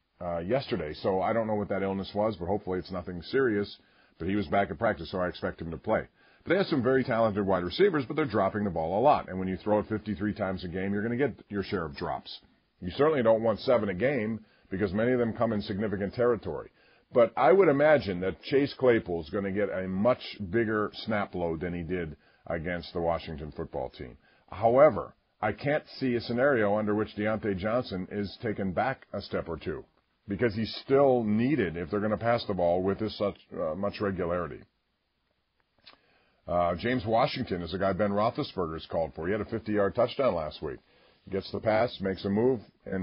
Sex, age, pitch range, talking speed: male, 50-69, 95-115 Hz, 215 wpm